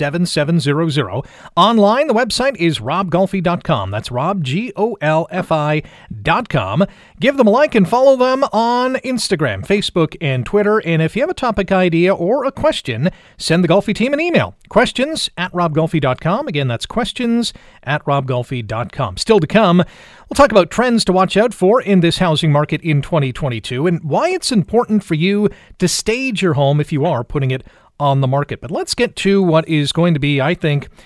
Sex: male